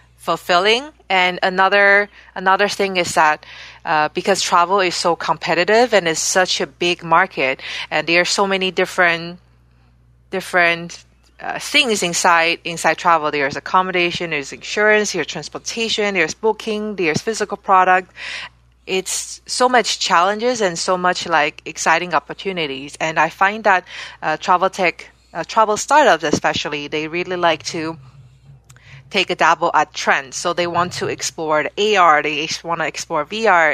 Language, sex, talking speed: English, female, 150 wpm